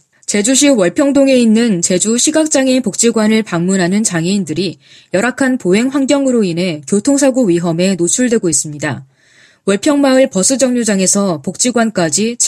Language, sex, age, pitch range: Korean, female, 20-39, 175-250 Hz